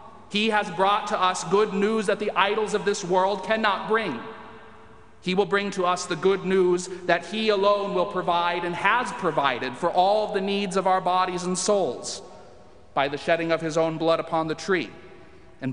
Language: English